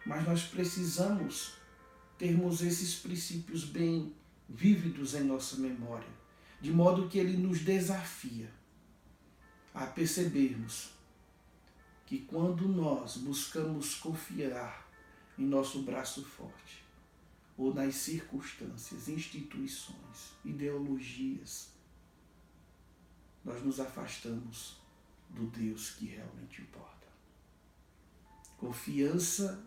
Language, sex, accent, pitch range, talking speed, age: Portuguese, male, Brazilian, 110-165 Hz, 85 wpm, 60-79